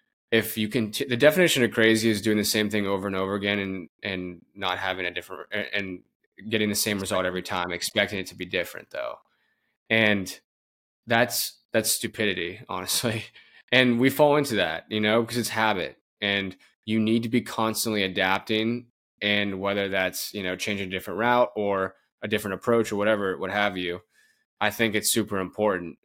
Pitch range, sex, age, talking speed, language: 95-115 Hz, male, 20-39, 190 wpm, English